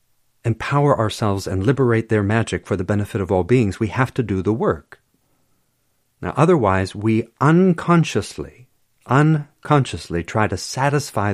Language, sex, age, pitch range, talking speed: English, male, 50-69, 95-125 Hz, 140 wpm